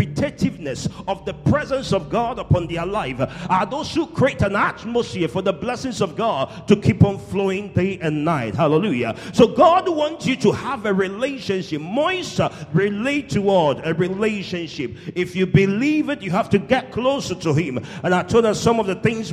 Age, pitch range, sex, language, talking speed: 50-69, 165-230 Hz, male, English, 185 wpm